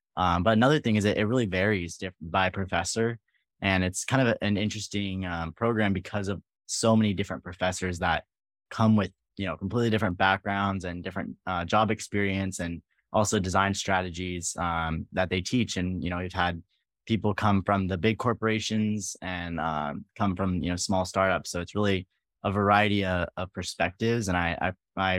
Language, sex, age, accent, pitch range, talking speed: English, male, 20-39, American, 90-105 Hz, 190 wpm